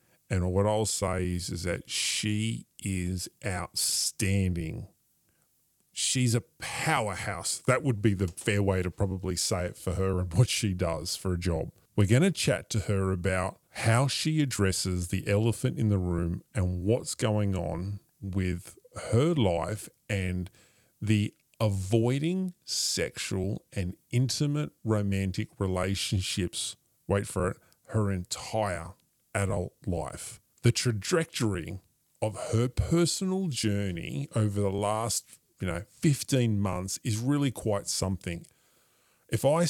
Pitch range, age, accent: 95-120 Hz, 30-49, American